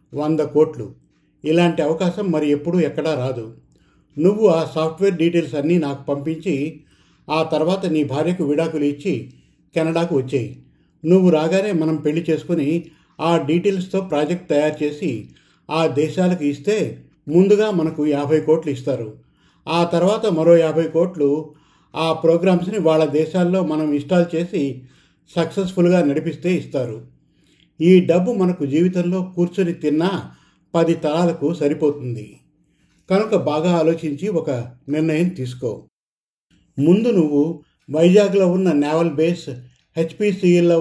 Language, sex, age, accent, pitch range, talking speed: Telugu, male, 50-69, native, 150-175 Hz, 115 wpm